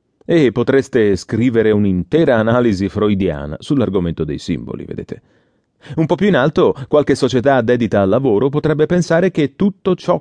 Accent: Italian